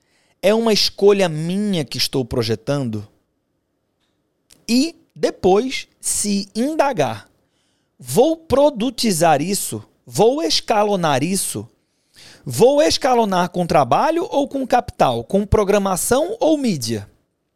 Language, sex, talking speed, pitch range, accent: Portuguese, male, 95 wpm, 130-195 Hz, Brazilian